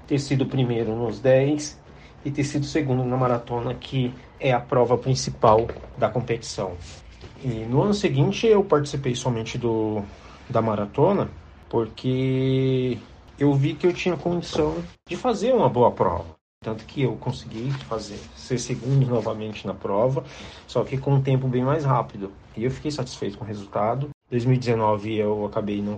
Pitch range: 100-130 Hz